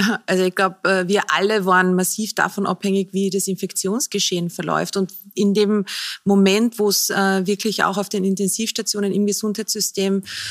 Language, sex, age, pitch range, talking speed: German, female, 30-49, 195-215 Hz, 150 wpm